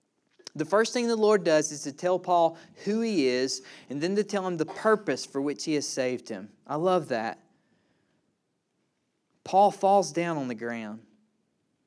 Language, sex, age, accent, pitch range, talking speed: English, male, 30-49, American, 160-220 Hz, 175 wpm